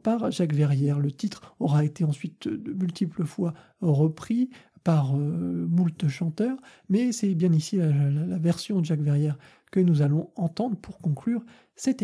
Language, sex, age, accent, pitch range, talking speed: French, male, 40-59, French, 155-205 Hz, 165 wpm